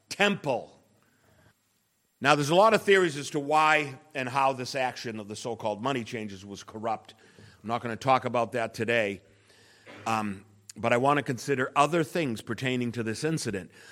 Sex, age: male, 50-69